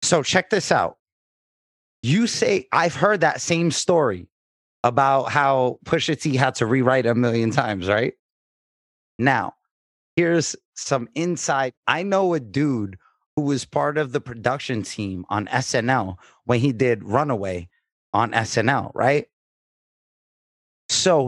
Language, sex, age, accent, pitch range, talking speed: English, male, 30-49, American, 115-155 Hz, 135 wpm